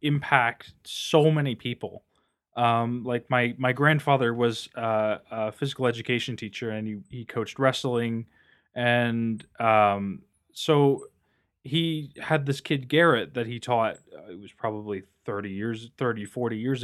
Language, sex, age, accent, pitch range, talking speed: English, male, 20-39, American, 115-140 Hz, 145 wpm